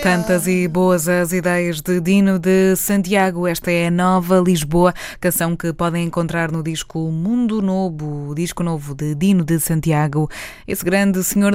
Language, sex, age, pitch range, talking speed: Portuguese, female, 20-39, 170-200 Hz, 160 wpm